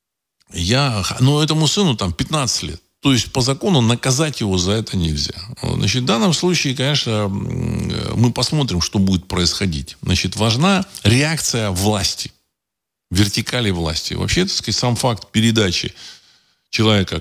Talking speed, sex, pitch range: 135 wpm, male, 85-125 Hz